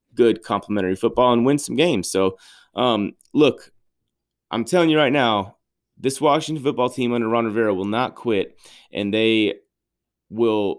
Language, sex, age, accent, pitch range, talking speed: English, male, 30-49, American, 105-130 Hz, 155 wpm